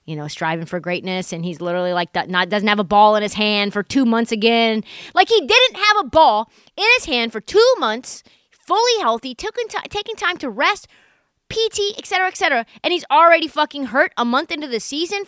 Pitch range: 190-300 Hz